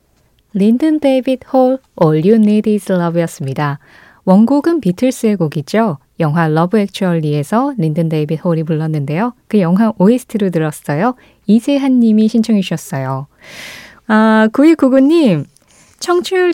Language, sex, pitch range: Korean, female, 165-245 Hz